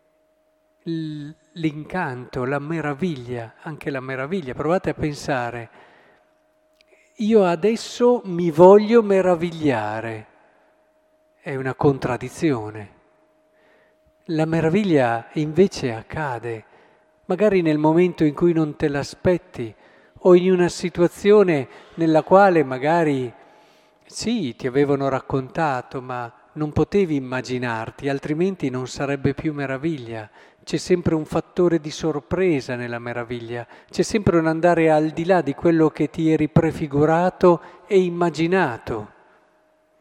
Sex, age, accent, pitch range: male, 50-69, native, 130-185 Hz